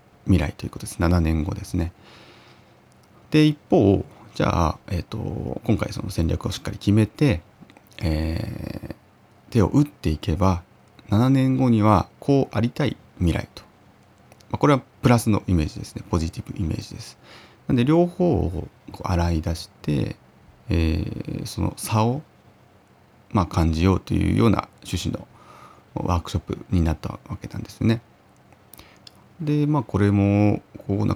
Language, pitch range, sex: Japanese, 85-110 Hz, male